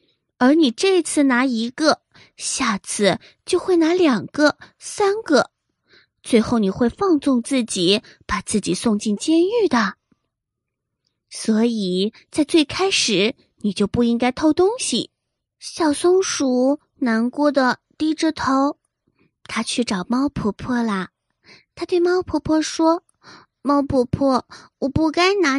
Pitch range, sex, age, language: 225-310 Hz, female, 20-39, Chinese